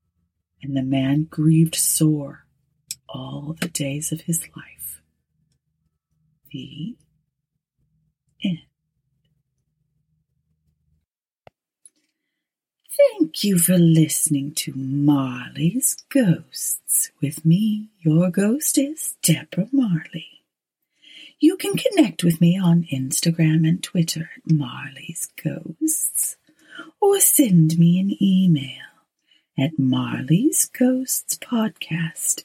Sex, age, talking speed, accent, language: female, 30-49, 85 wpm, American, English